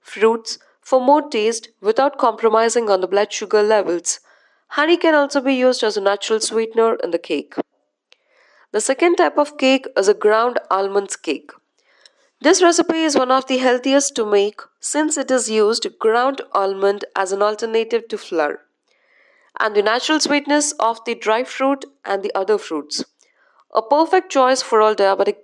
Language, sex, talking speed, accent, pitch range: English, female, 170 wpm, Indian, 215-285 Hz